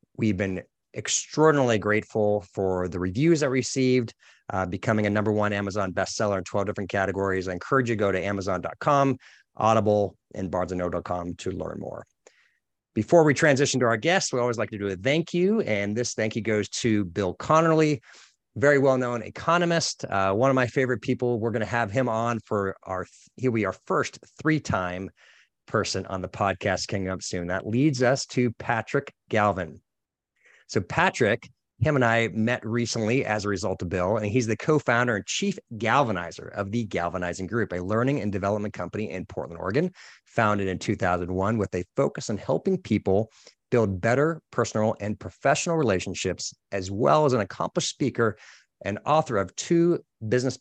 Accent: American